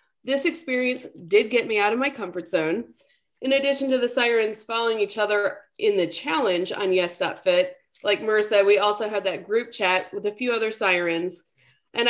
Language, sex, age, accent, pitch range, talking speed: English, female, 30-49, American, 190-275 Hz, 185 wpm